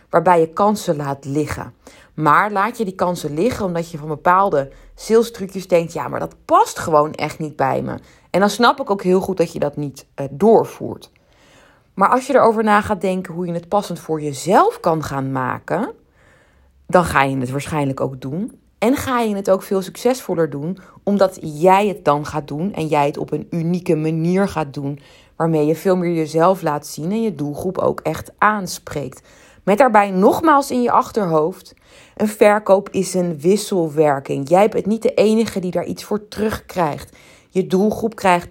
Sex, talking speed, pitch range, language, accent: female, 190 wpm, 155-205 Hz, Dutch, Dutch